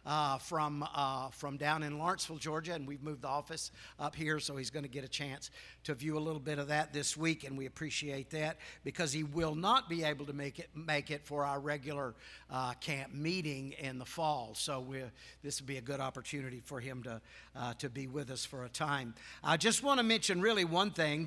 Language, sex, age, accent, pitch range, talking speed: English, male, 60-79, American, 140-170 Hz, 230 wpm